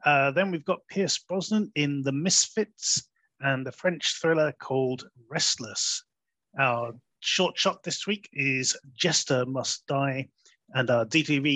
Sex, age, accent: male, 30-49, British